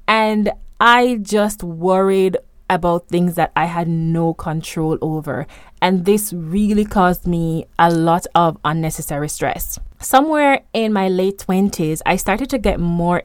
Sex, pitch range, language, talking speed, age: female, 170-210 Hz, English, 145 wpm, 20-39